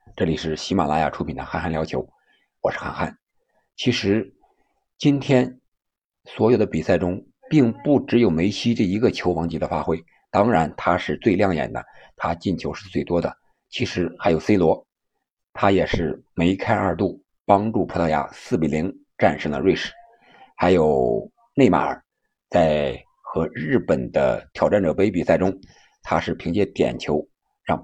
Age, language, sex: 50-69, Chinese, male